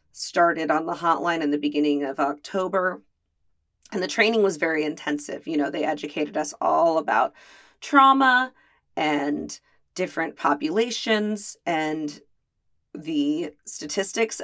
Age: 30-49